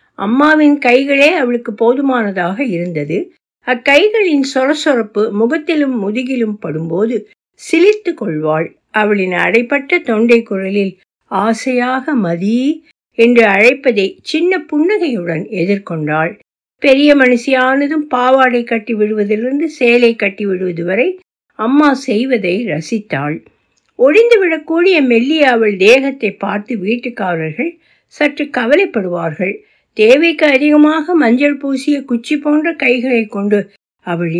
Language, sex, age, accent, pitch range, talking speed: Tamil, female, 60-79, native, 205-290 Hz, 90 wpm